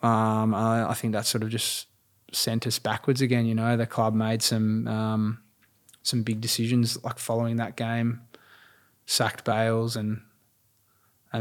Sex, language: male, English